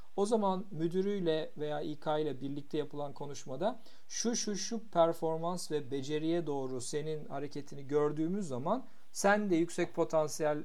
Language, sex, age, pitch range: Turkish, male, 50-69, 145-185 Hz